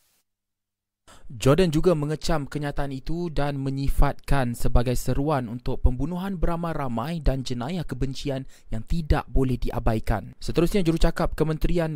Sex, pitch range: male, 125-155 Hz